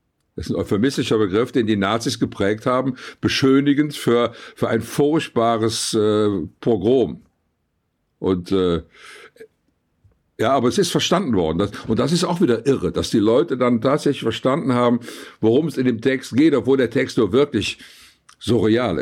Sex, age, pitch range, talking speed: male, 60-79, 110-145 Hz, 160 wpm